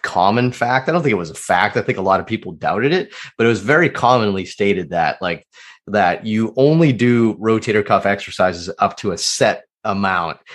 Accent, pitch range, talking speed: American, 100-125 Hz, 210 wpm